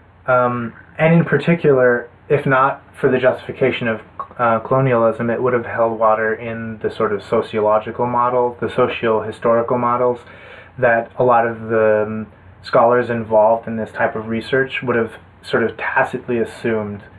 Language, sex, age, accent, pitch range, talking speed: English, male, 20-39, American, 105-130 Hz, 155 wpm